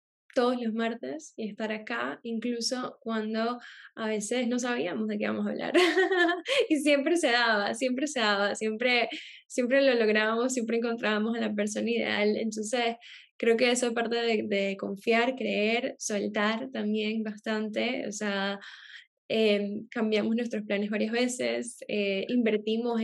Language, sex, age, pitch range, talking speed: Spanish, female, 10-29, 205-235 Hz, 145 wpm